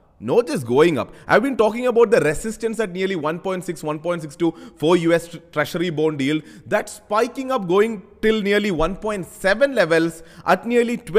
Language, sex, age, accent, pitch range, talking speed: English, male, 20-39, Indian, 155-210 Hz, 160 wpm